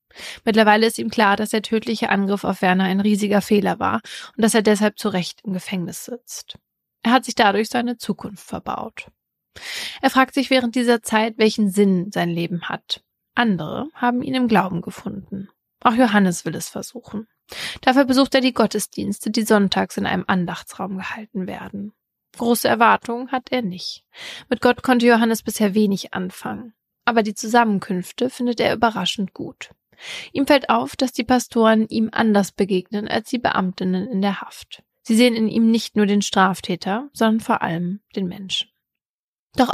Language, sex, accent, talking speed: German, female, German, 170 wpm